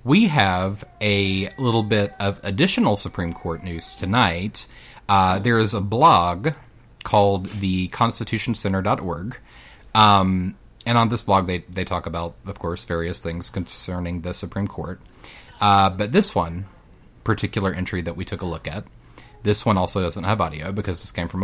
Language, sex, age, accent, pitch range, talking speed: English, male, 30-49, American, 90-115 Hz, 160 wpm